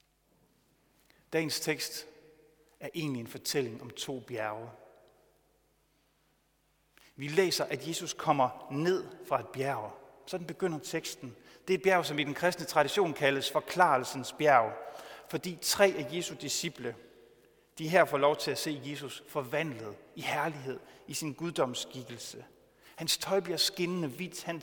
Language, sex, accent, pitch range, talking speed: Danish, male, native, 125-165 Hz, 140 wpm